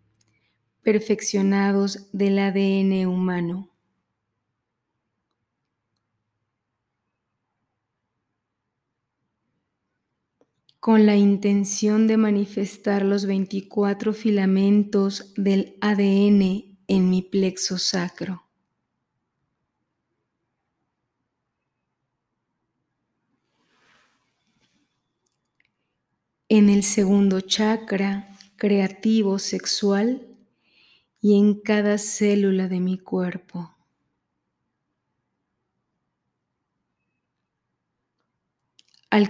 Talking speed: 50 wpm